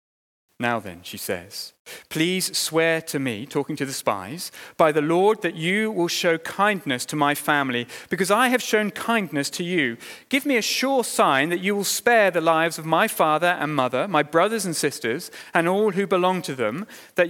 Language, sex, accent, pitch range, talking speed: English, male, British, 145-190 Hz, 200 wpm